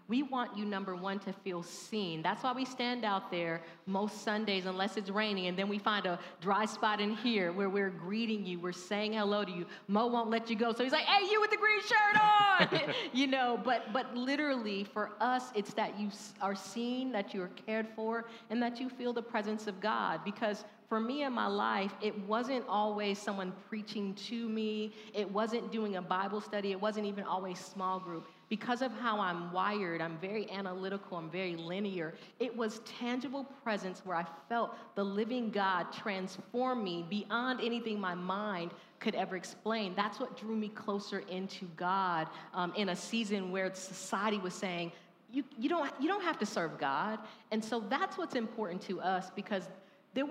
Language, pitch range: English, 190-230 Hz